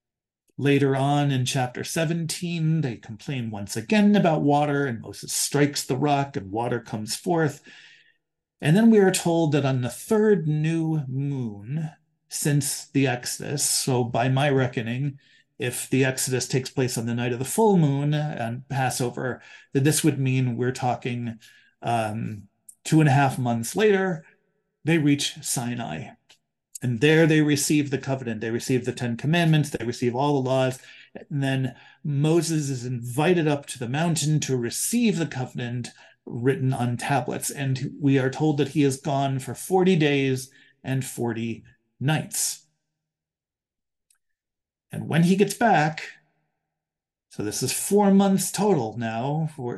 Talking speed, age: 155 wpm, 40-59